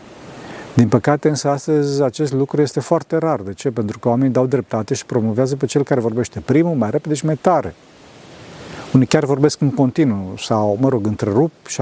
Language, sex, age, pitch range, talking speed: Romanian, male, 40-59, 115-145 Hz, 195 wpm